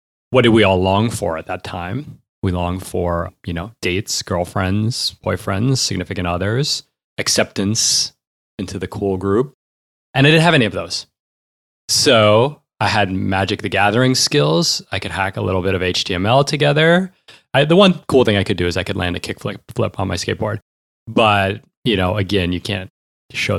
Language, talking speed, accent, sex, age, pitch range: English, 185 wpm, American, male, 30-49, 90-120 Hz